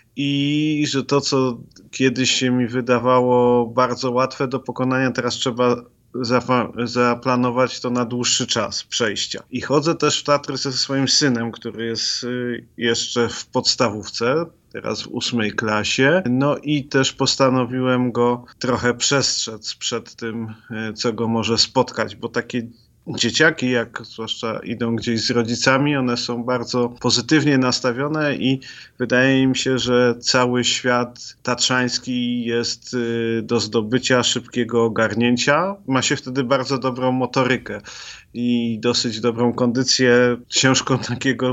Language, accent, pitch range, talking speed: Polish, native, 120-130 Hz, 130 wpm